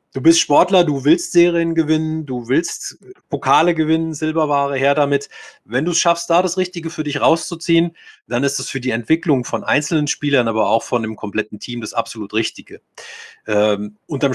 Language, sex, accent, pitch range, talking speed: German, male, German, 115-150 Hz, 185 wpm